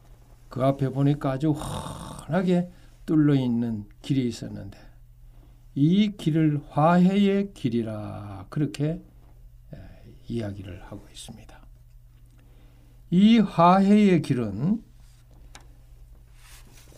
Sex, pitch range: male, 120-175 Hz